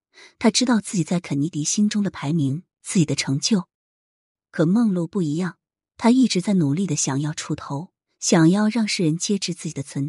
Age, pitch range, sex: 30-49, 150-205 Hz, female